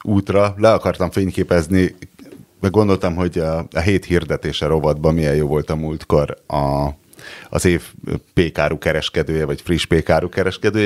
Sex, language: male, Hungarian